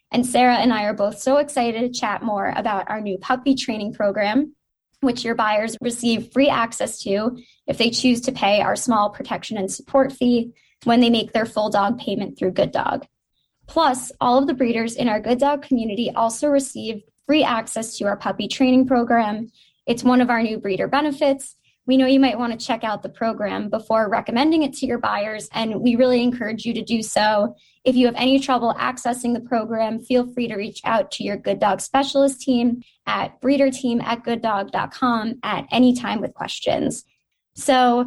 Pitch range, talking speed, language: 225-265 Hz, 190 wpm, English